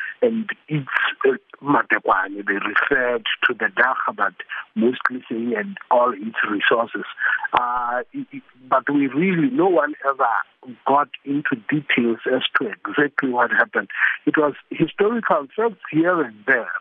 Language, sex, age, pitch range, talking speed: English, male, 50-69, 120-170 Hz, 135 wpm